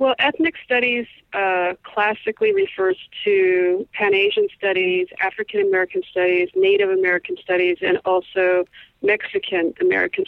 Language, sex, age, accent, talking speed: English, female, 40-59, American, 100 wpm